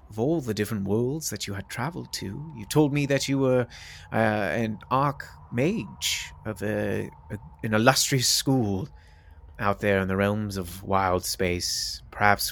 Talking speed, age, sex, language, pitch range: 170 wpm, 30-49, male, English, 90-115 Hz